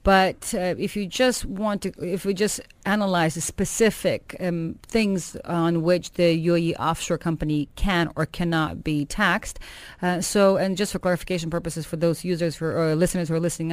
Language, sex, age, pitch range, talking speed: English, female, 30-49, 160-190 Hz, 190 wpm